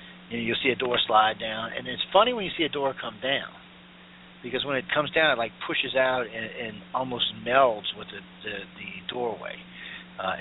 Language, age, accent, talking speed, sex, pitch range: English, 40-59, American, 215 wpm, male, 100-150 Hz